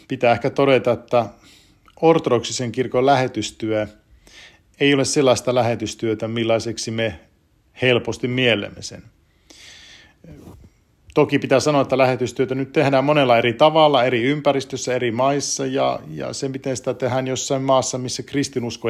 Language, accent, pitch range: Finnish, native, 115-140 Hz